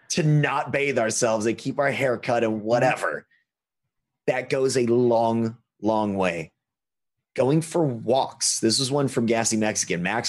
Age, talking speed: 30-49, 155 wpm